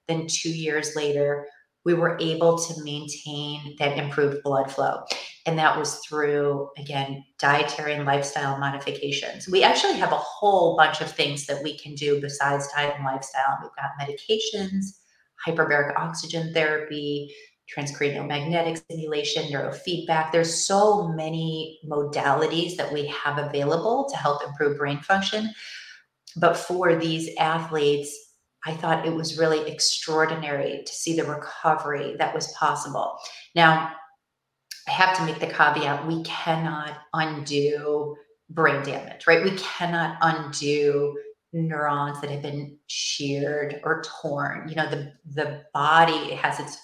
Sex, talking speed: female, 135 wpm